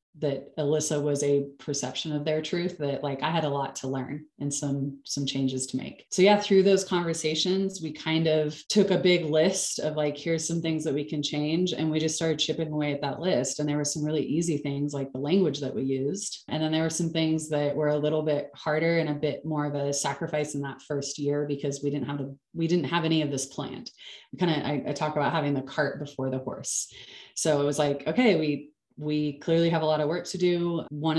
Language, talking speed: English, 240 wpm